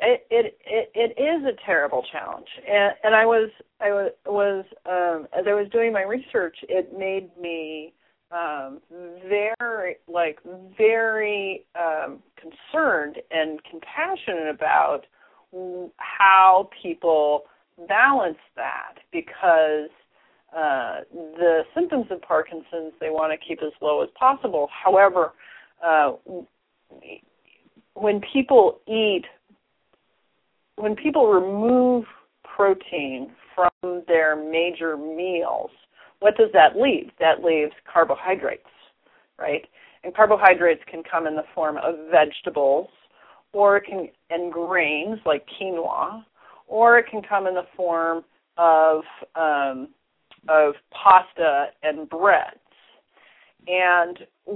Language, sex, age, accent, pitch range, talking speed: English, female, 40-59, American, 165-210 Hz, 115 wpm